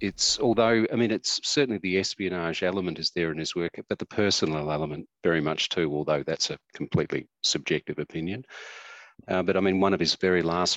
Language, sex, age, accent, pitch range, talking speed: English, male, 40-59, Australian, 80-95 Hz, 200 wpm